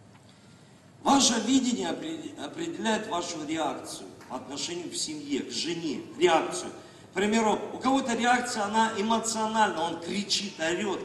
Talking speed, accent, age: 120 wpm, native, 50-69